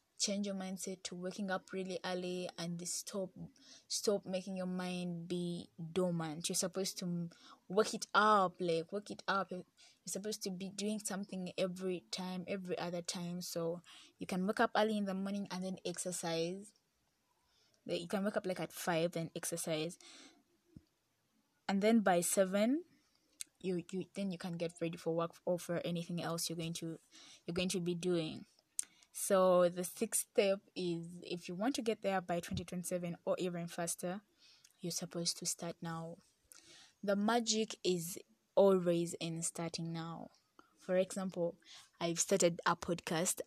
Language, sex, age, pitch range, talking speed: English, female, 20-39, 170-195 Hz, 160 wpm